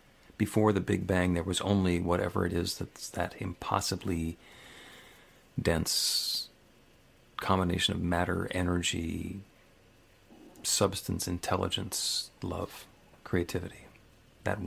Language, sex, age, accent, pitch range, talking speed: English, male, 40-59, American, 90-105 Hz, 95 wpm